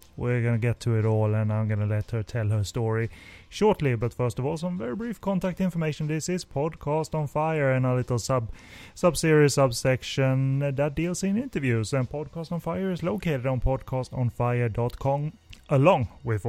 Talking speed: 180 wpm